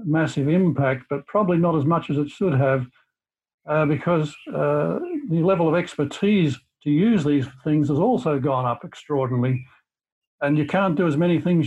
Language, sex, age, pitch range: English, male, 60-79, 140-160 Hz